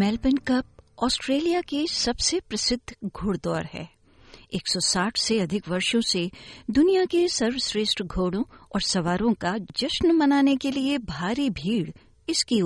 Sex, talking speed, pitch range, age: female, 130 wpm, 180-245 Hz, 50-69